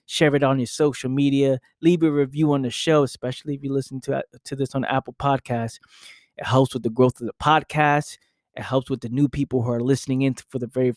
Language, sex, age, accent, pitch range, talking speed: English, male, 20-39, American, 120-145 Hz, 235 wpm